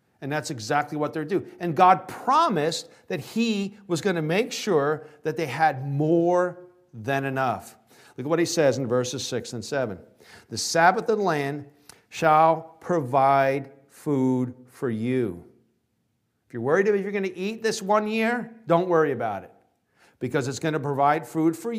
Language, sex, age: English, male, 50-69